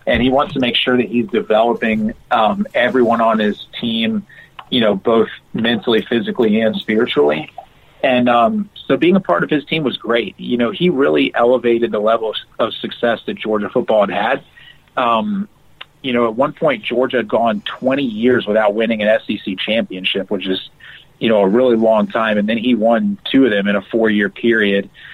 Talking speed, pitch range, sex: 195 wpm, 105-120 Hz, male